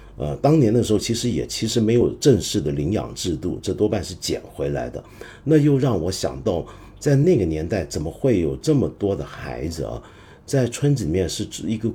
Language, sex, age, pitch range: Chinese, male, 50-69, 90-140 Hz